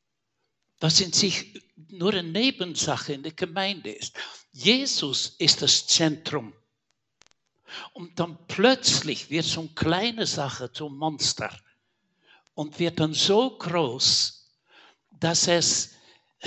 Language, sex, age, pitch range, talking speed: German, male, 60-79, 135-180 Hz, 115 wpm